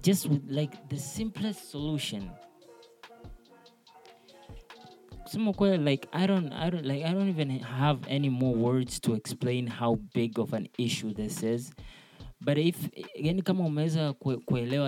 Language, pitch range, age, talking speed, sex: Swahili, 120-155 Hz, 20-39, 125 wpm, male